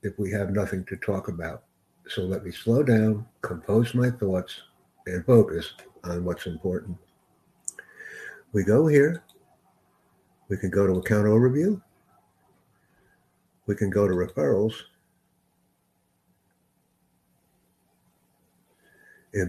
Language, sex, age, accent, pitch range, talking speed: English, male, 60-79, American, 90-105 Hz, 105 wpm